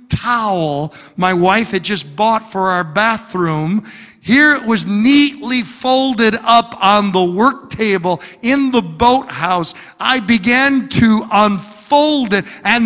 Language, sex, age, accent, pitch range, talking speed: English, male, 50-69, American, 165-240 Hz, 130 wpm